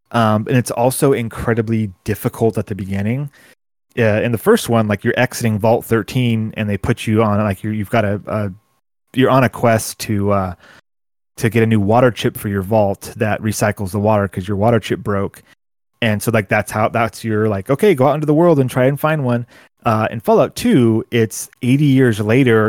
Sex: male